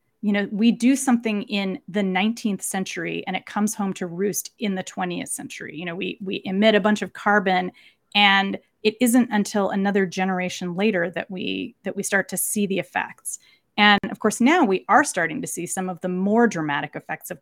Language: English